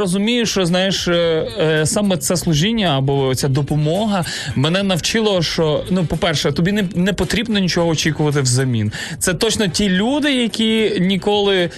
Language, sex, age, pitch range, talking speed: Ukrainian, male, 20-39, 145-195 Hz, 140 wpm